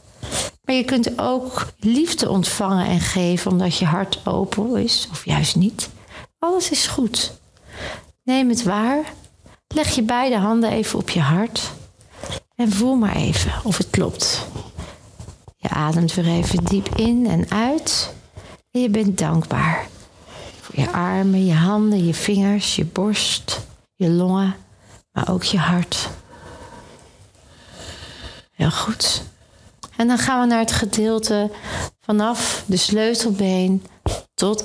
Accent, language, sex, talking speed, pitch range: Dutch, Dutch, female, 135 wpm, 180-225 Hz